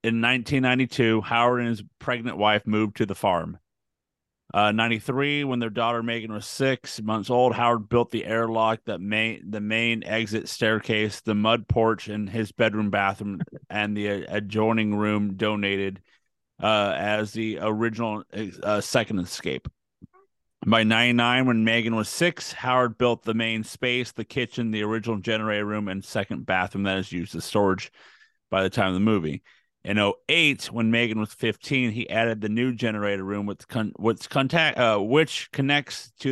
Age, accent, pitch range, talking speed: 30-49, American, 105-120 Hz, 160 wpm